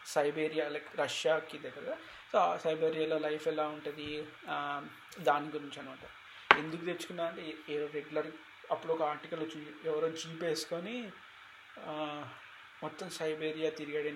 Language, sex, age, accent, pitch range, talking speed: Telugu, male, 20-39, native, 155-180 Hz, 120 wpm